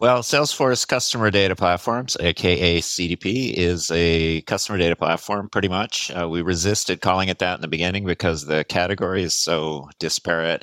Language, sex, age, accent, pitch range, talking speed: English, male, 40-59, American, 75-90 Hz, 165 wpm